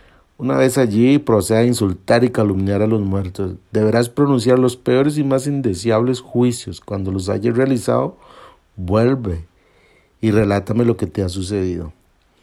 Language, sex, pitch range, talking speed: Spanish, male, 95-120 Hz, 150 wpm